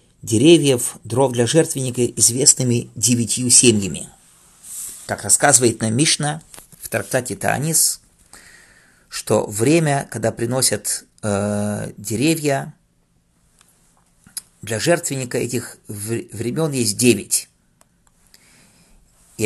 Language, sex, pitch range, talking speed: English, male, 110-145 Hz, 85 wpm